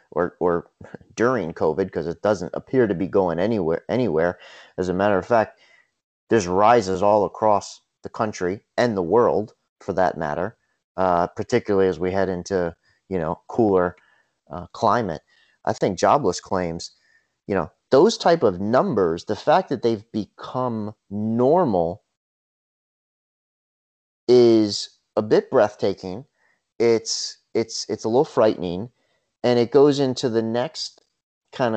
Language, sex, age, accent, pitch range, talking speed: English, male, 30-49, American, 95-120 Hz, 140 wpm